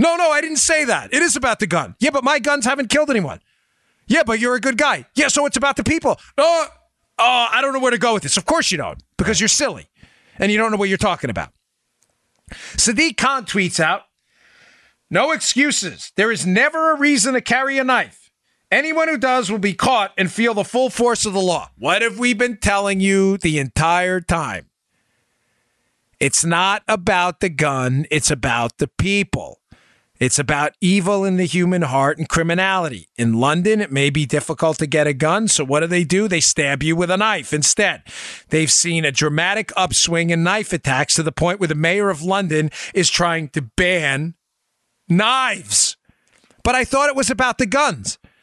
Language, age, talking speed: English, 40-59, 200 wpm